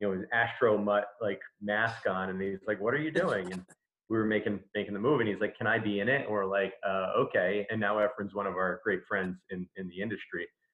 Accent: American